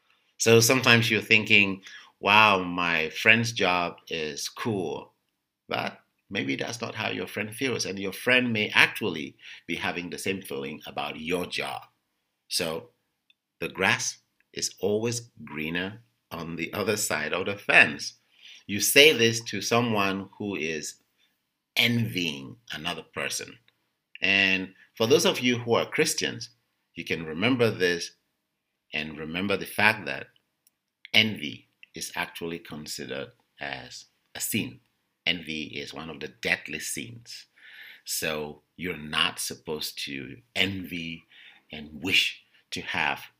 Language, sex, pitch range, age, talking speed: English, male, 85-115 Hz, 50-69, 130 wpm